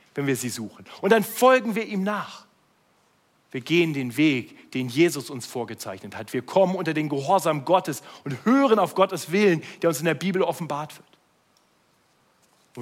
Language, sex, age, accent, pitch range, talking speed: German, male, 40-59, German, 130-195 Hz, 180 wpm